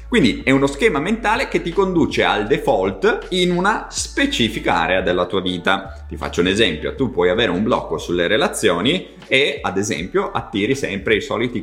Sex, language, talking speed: male, Italian, 180 wpm